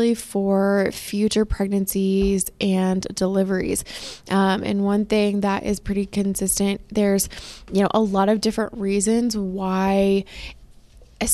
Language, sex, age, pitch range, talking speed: English, female, 20-39, 195-210 Hz, 120 wpm